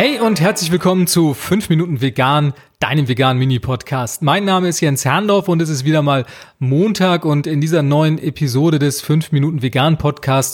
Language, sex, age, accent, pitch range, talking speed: German, male, 30-49, German, 150-195 Hz, 180 wpm